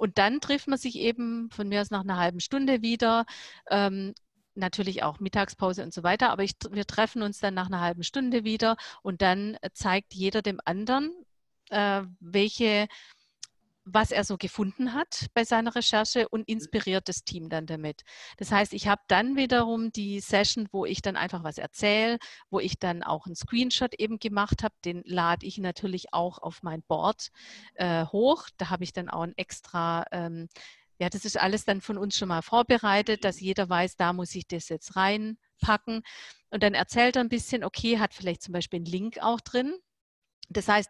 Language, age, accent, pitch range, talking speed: German, 50-69, German, 180-220 Hz, 190 wpm